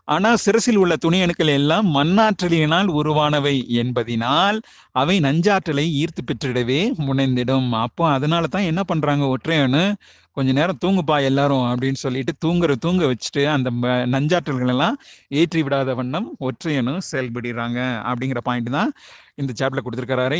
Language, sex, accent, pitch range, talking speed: Tamil, male, native, 135-175 Hz, 125 wpm